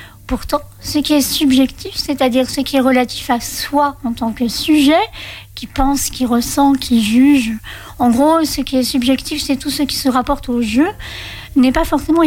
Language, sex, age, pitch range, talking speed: French, female, 60-79, 240-295 Hz, 190 wpm